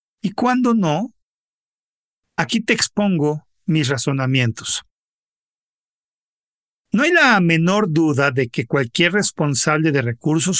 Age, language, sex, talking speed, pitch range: 50-69, Spanish, male, 110 wpm, 145-200 Hz